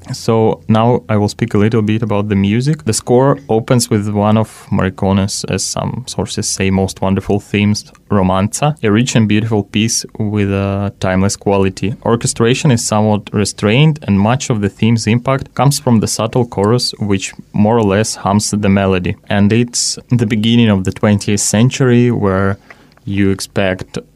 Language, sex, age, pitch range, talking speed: English, male, 20-39, 100-115 Hz, 170 wpm